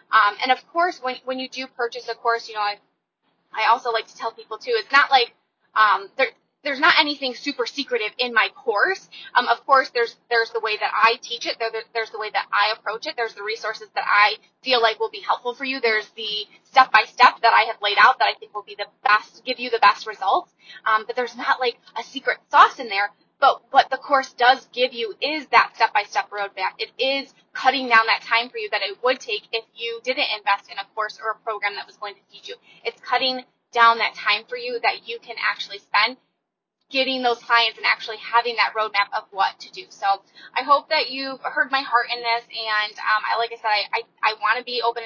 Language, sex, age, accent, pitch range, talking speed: English, female, 20-39, American, 215-265 Hz, 240 wpm